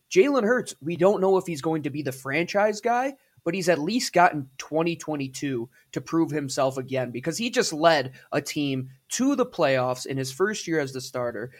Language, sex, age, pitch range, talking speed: English, male, 20-39, 130-170 Hz, 200 wpm